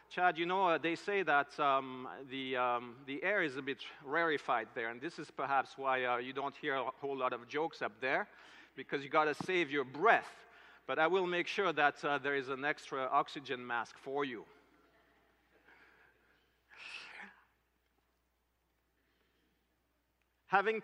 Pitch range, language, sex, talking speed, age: 145-185 Hz, English, male, 160 wpm, 50-69